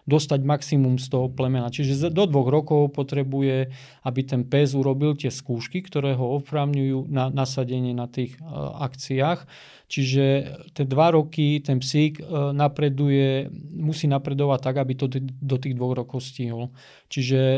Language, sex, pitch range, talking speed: Slovak, male, 130-145 Hz, 145 wpm